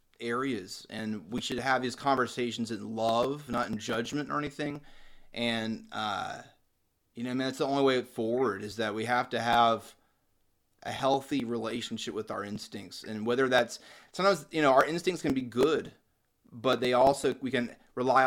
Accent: American